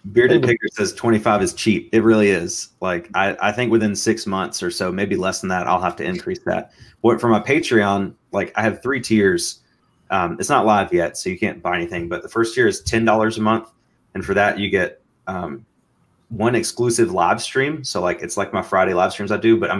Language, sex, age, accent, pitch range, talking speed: English, male, 30-49, American, 95-115 Hz, 235 wpm